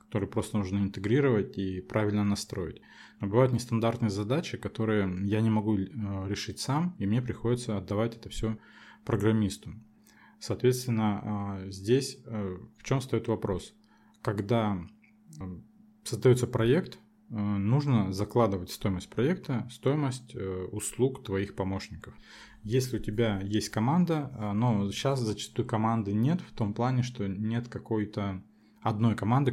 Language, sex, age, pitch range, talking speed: Russian, male, 20-39, 100-120 Hz, 120 wpm